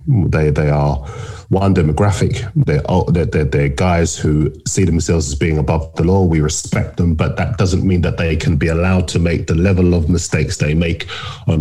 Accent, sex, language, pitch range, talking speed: British, male, English, 85-110 Hz, 195 wpm